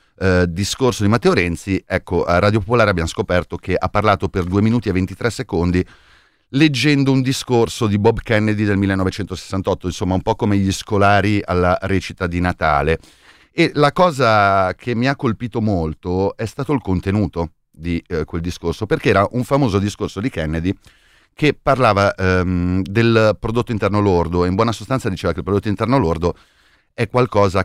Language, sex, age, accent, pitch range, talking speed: Italian, male, 30-49, native, 90-105 Hz, 175 wpm